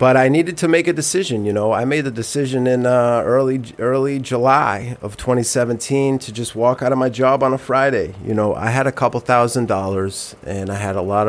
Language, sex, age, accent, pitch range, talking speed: English, male, 30-49, American, 95-120 Hz, 230 wpm